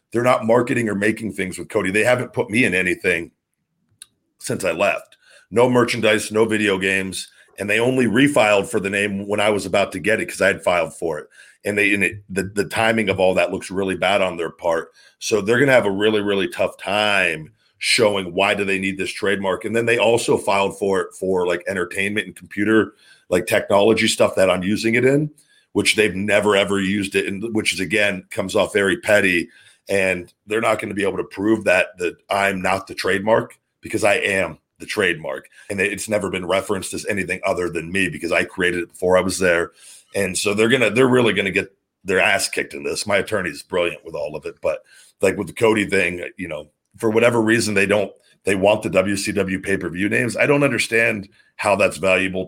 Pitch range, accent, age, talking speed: 95-110 Hz, American, 40-59, 225 wpm